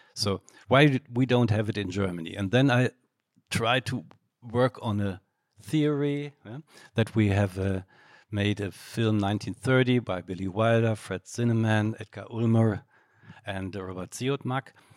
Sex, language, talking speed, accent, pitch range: male, English, 145 wpm, German, 105-125 Hz